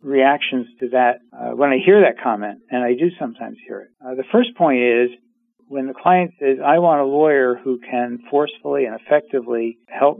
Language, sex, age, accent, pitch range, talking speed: English, male, 50-69, American, 120-180 Hz, 200 wpm